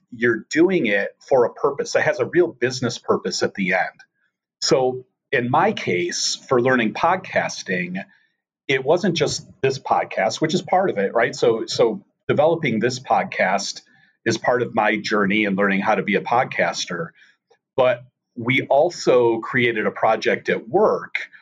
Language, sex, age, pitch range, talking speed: English, male, 40-59, 110-160 Hz, 160 wpm